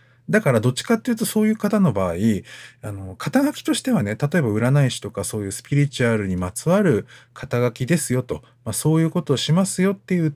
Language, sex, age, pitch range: Japanese, male, 50-69, 110-175 Hz